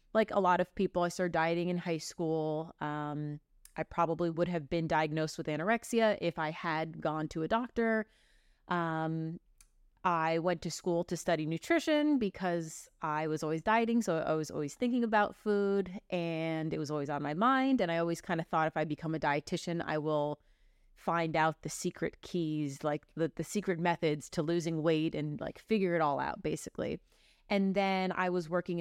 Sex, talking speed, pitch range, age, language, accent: female, 190 wpm, 160-200 Hz, 30-49, English, American